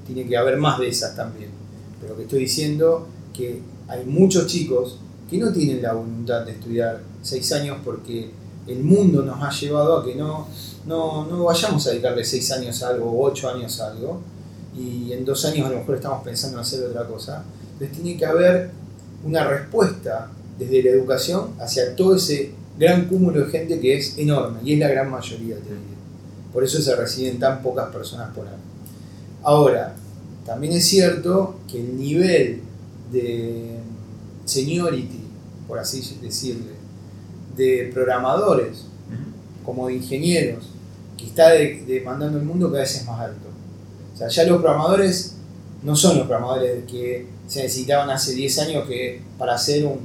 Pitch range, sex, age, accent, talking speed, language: 115-150 Hz, male, 30-49, Argentinian, 170 wpm, Spanish